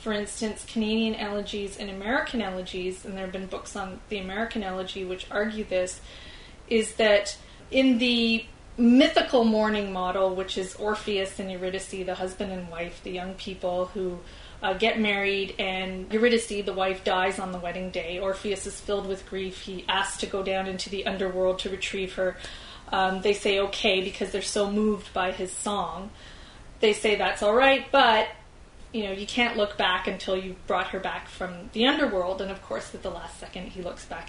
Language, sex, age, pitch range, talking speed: English, female, 20-39, 190-225 Hz, 190 wpm